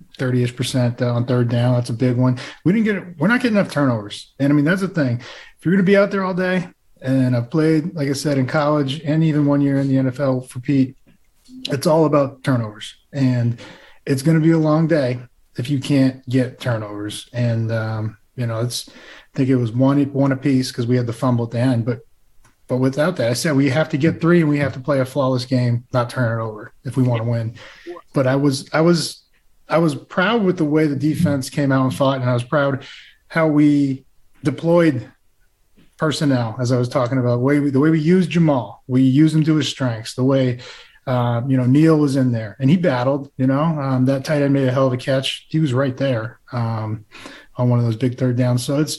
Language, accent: English, American